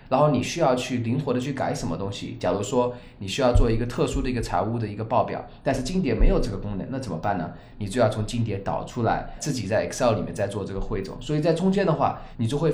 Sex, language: male, Chinese